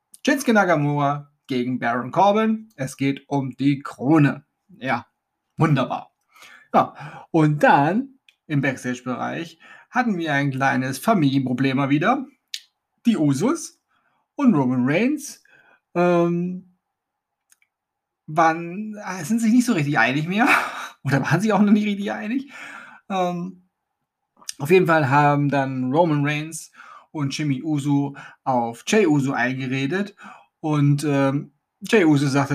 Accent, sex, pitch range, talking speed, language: German, male, 140-190 Hz, 120 wpm, German